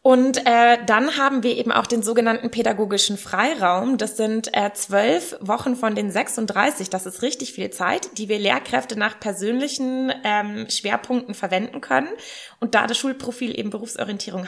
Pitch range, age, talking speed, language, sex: 205-245 Hz, 20-39, 160 wpm, German, female